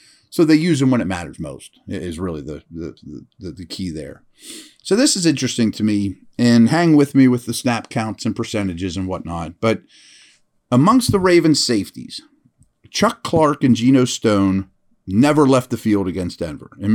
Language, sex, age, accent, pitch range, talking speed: English, male, 40-59, American, 100-145 Hz, 175 wpm